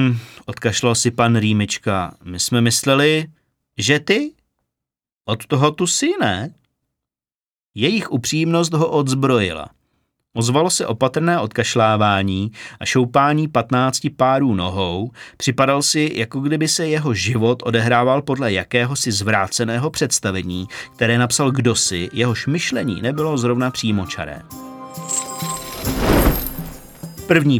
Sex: male